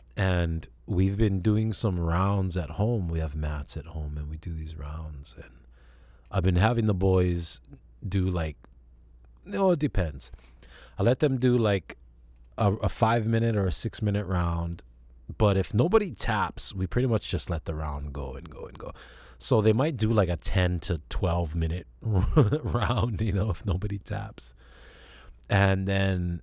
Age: 30-49